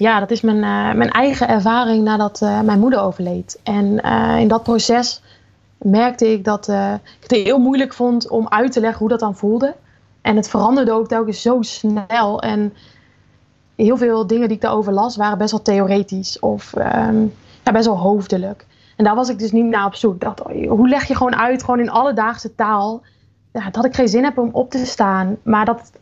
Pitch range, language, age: 195-230 Hz, Dutch, 20-39